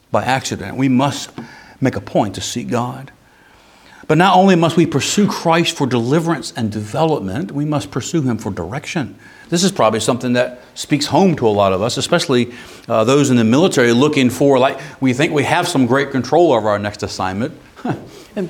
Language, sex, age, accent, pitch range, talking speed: English, male, 60-79, American, 115-145 Hz, 190 wpm